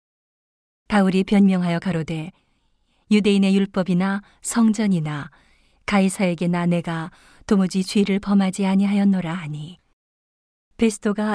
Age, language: 40-59, Korean